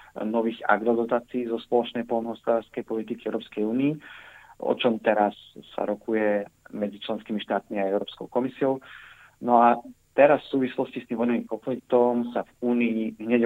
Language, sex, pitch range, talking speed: Slovak, male, 105-120 Hz, 140 wpm